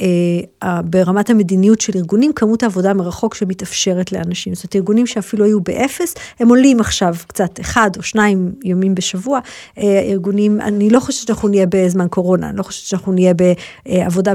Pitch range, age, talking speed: 185-210 Hz, 50-69, 160 wpm